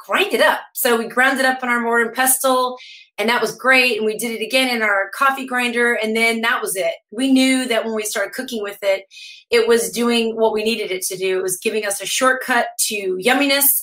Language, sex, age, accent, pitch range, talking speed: English, female, 30-49, American, 200-250 Hz, 245 wpm